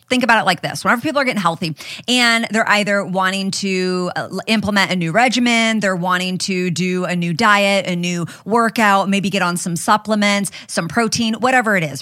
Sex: female